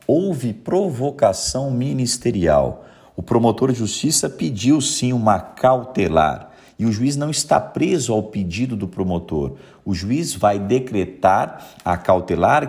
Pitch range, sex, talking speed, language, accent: 95-130 Hz, male, 130 wpm, Portuguese, Brazilian